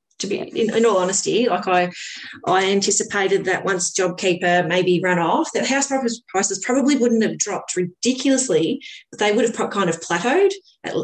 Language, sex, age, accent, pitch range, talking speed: English, female, 30-49, Australian, 180-225 Hz, 175 wpm